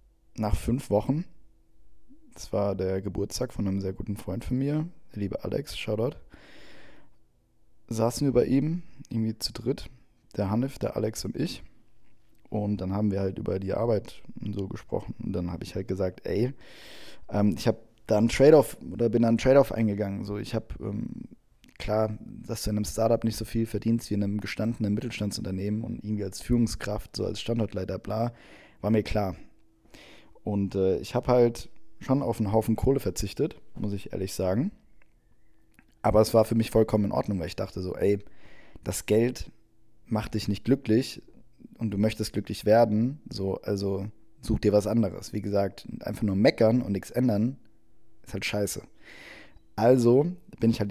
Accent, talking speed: German, 175 wpm